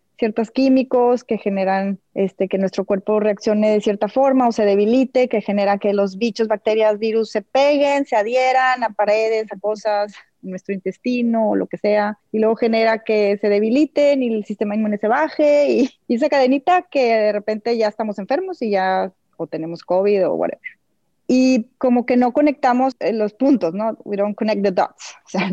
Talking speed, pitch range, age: 190 wpm, 205-265 Hz, 20-39